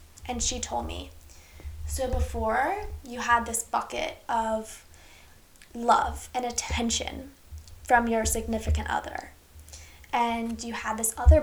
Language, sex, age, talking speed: English, female, 10-29, 120 wpm